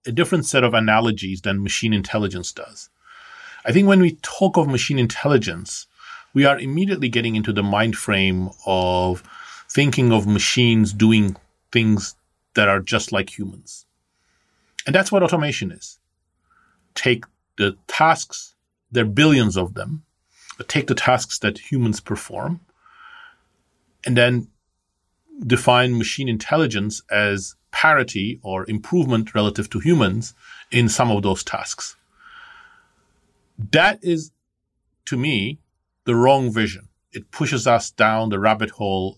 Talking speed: 135 wpm